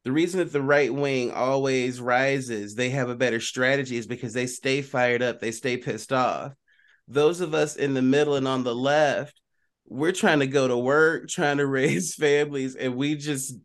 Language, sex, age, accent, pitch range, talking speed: English, male, 30-49, American, 130-160 Hz, 200 wpm